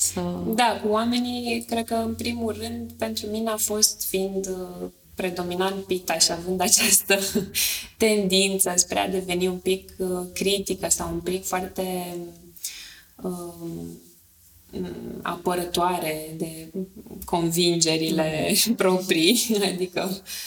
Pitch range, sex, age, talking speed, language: 175-215 Hz, female, 20-39, 105 wpm, Romanian